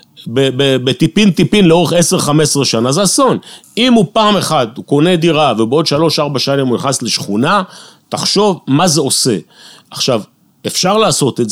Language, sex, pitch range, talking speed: Hebrew, male, 120-160 Hz, 140 wpm